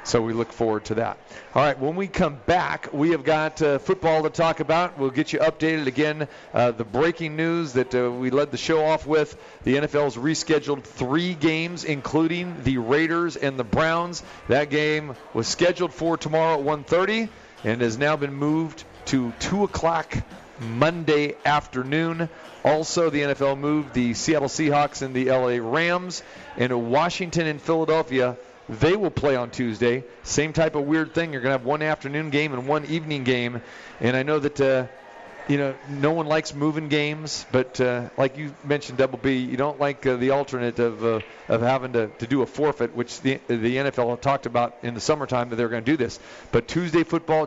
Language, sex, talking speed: English, male, 195 wpm